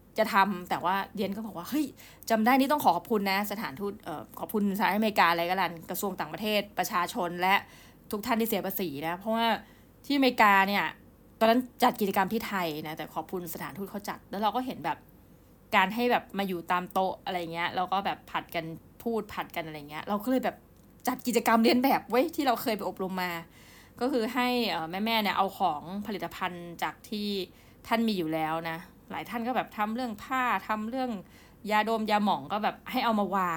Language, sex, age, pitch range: Thai, female, 20-39, 180-230 Hz